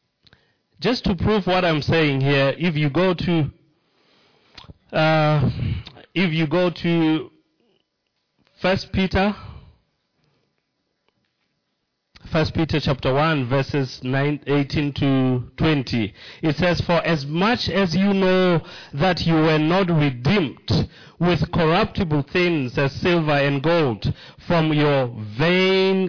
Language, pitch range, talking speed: English, 135-175 Hz, 115 wpm